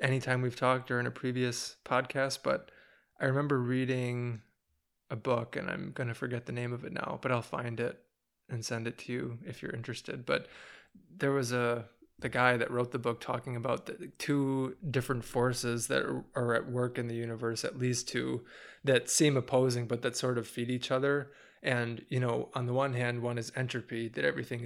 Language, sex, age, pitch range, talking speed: English, male, 20-39, 120-130 Hz, 205 wpm